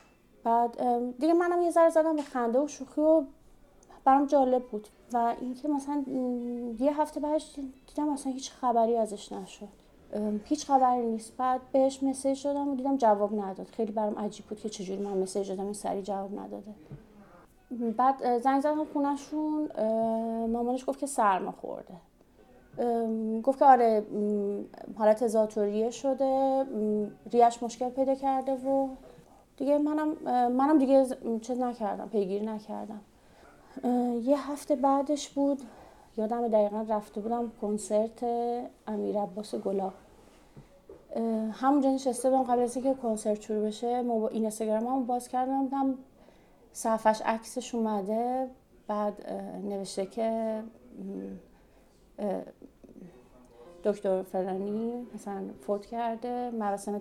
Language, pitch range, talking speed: Persian, 210-270 Hz, 120 wpm